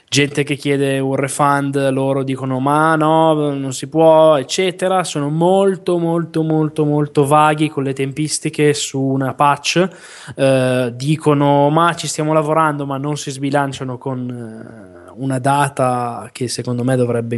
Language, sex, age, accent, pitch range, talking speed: Italian, male, 20-39, native, 130-155 Hz, 145 wpm